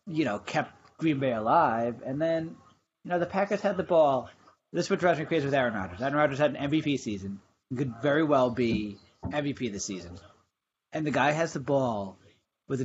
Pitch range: 125-165 Hz